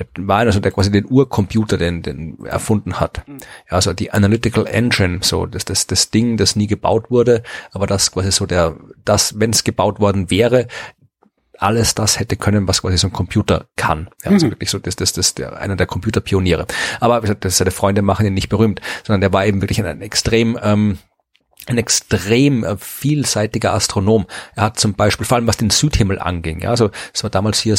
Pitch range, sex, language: 95-115 Hz, male, German